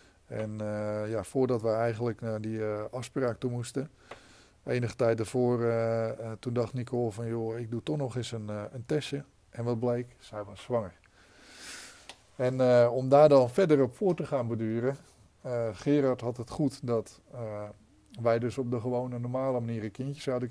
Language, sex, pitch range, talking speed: Dutch, male, 115-135 Hz, 195 wpm